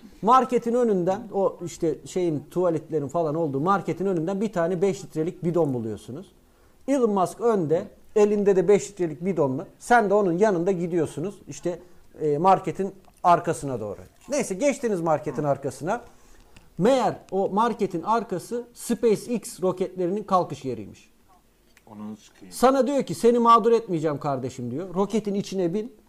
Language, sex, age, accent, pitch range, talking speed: Turkish, male, 50-69, native, 155-215 Hz, 130 wpm